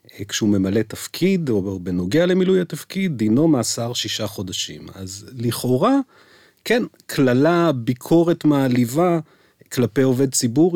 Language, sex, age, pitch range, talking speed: English, male, 30-49, 110-150 Hz, 110 wpm